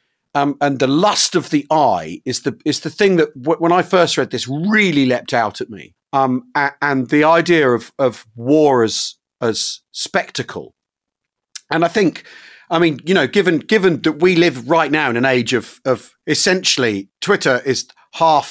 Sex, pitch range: male, 130-175 Hz